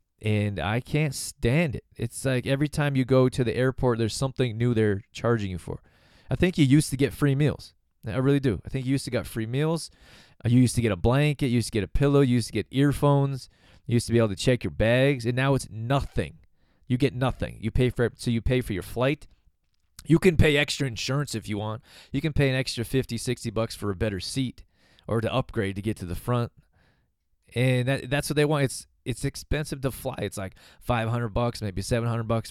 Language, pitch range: English, 100-130 Hz